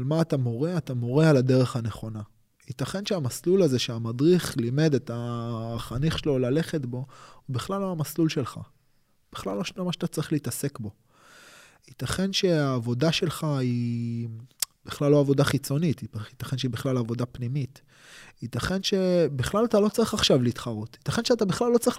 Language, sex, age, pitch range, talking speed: Hebrew, male, 20-39, 120-160 Hz, 130 wpm